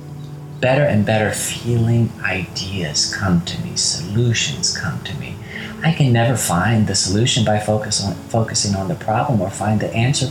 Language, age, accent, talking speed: English, 30-49, American, 170 wpm